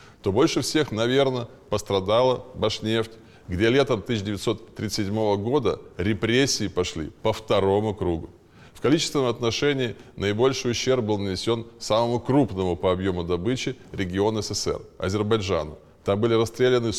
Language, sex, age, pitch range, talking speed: Russian, male, 20-39, 95-125 Hz, 115 wpm